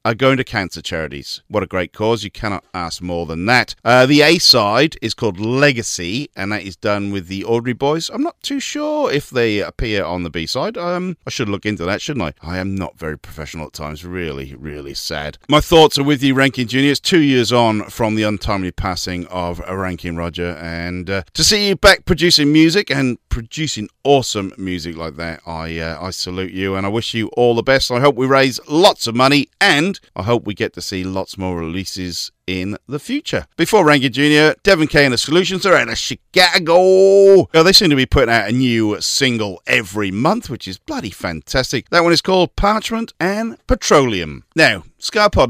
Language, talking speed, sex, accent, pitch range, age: English, 210 wpm, male, British, 95-155 Hz, 40-59